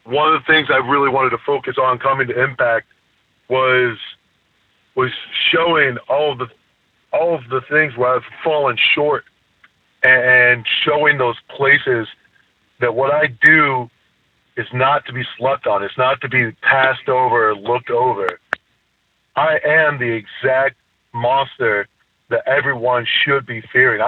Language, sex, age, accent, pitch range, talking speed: English, male, 40-59, American, 125-150 Hz, 150 wpm